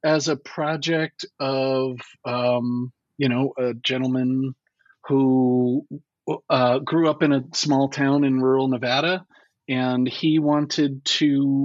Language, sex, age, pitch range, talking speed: English, male, 40-59, 130-145 Hz, 125 wpm